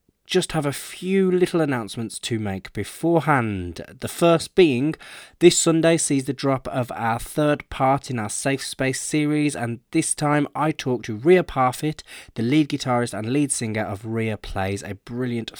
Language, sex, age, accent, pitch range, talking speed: English, male, 20-39, British, 105-150 Hz, 175 wpm